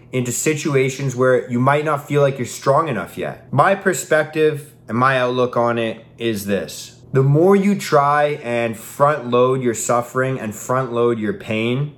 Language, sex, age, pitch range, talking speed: English, male, 20-39, 120-140 Hz, 175 wpm